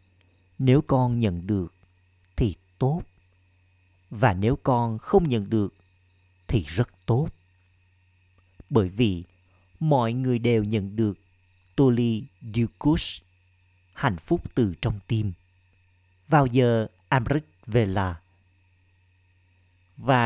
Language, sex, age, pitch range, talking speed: Vietnamese, male, 50-69, 90-120 Hz, 100 wpm